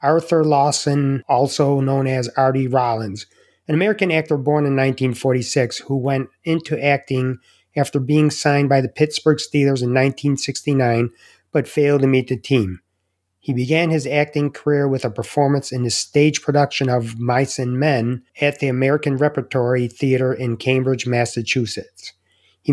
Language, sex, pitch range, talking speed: English, male, 125-145 Hz, 150 wpm